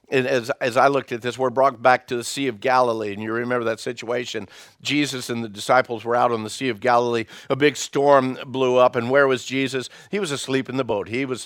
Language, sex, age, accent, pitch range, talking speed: English, male, 50-69, American, 110-145 Hz, 245 wpm